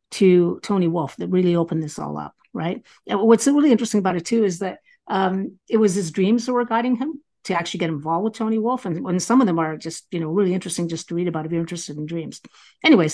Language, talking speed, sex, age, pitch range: English, 250 wpm, female, 50-69, 165-210 Hz